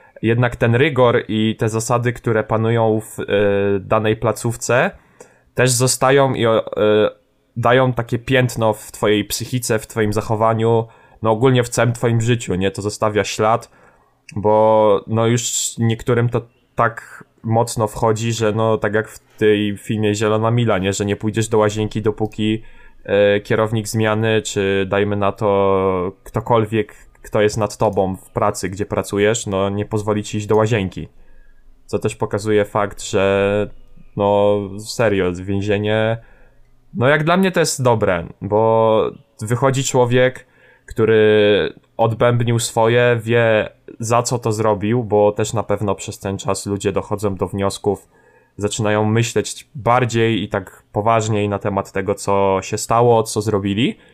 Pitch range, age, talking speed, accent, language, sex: 105-120 Hz, 10-29, 145 wpm, native, Polish, male